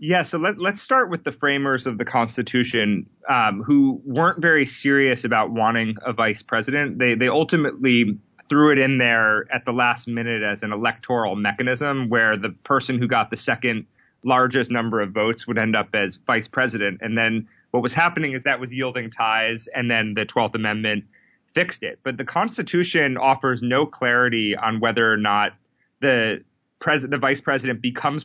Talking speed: 180 wpm